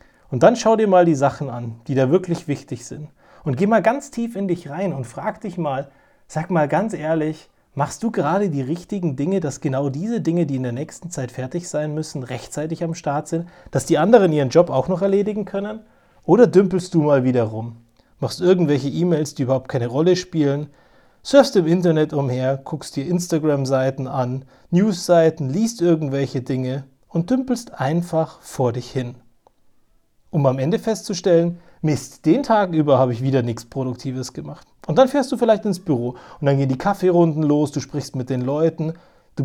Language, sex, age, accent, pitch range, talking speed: German, male, 30-49, German, 135-180 Hz, 190 wpm